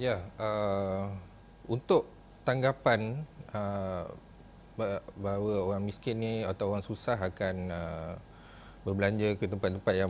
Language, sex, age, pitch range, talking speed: Malay, male, 30-49, 100-130 Hz, 105 wpm